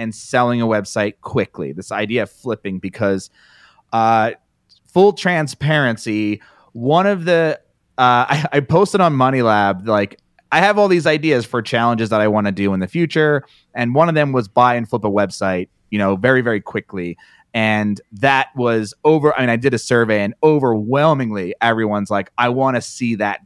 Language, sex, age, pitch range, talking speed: English, male, 30-49, 105-145 Hz, 185 wpm